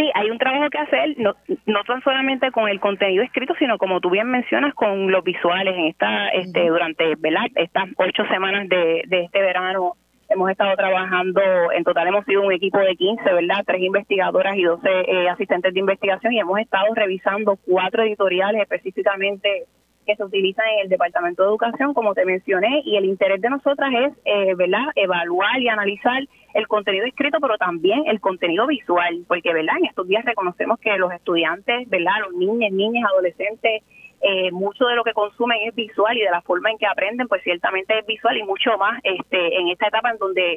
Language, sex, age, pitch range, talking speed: Spanish, female, 20-39, 185-230 Hz, 195 wpm